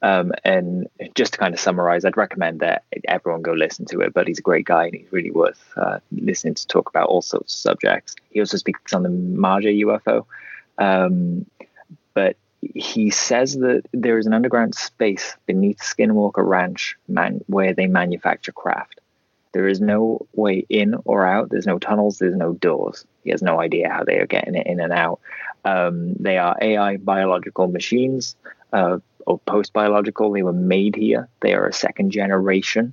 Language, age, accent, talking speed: English, 20-39, British, 185 wpm